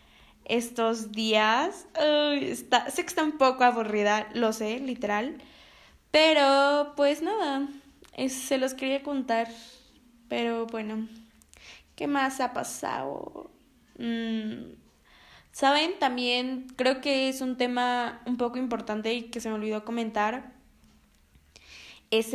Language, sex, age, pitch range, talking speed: Spanish, female, 10-29, 220-265 Hz, 120 wpm